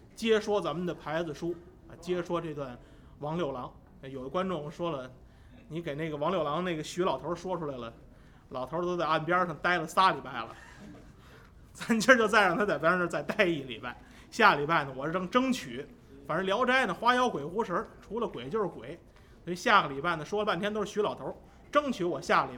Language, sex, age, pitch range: Chinese, male, 20-39, 135-190 Hz